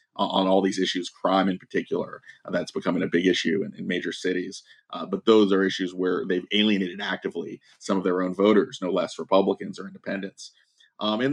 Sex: male